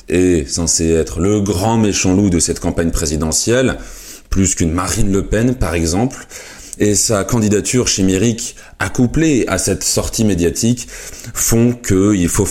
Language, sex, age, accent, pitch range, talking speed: French, male, 30-49, French, 80-105 Hz, 145 wpm